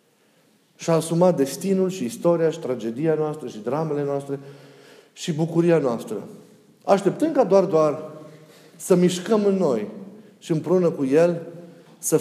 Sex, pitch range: male, 145-185 Hz